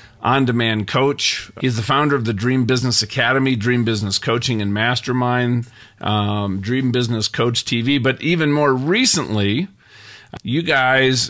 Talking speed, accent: 140 wpm, American